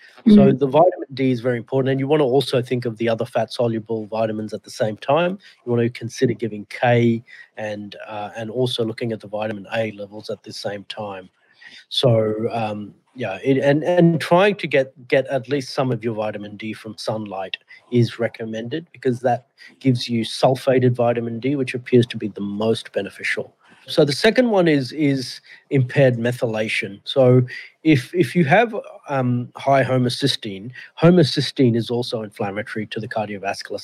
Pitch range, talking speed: 110-135 Hz, 175 wpm